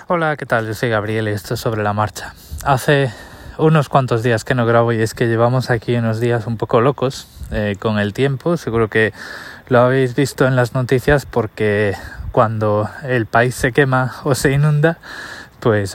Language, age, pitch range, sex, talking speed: Spanish, 20-39, 110-135 Hz, male, 190 wpm